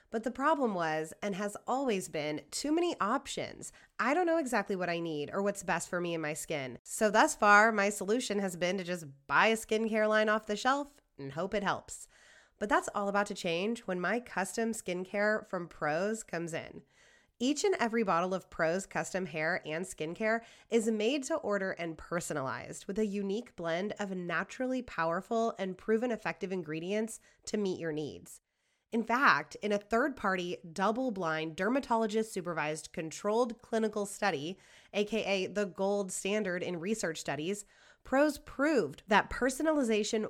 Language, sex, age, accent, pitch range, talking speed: English, female, 20-39, American, 175-230 Hz, 165 wpm